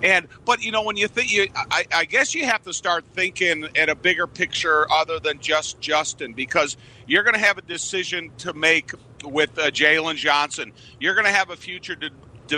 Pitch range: 140-160 Hz